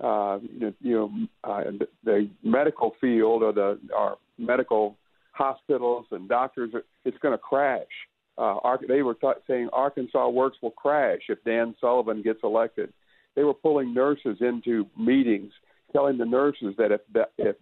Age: 50-69